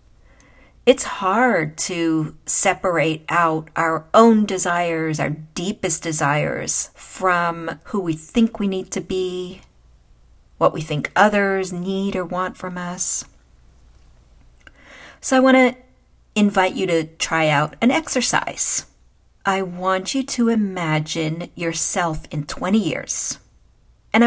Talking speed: 120 wpm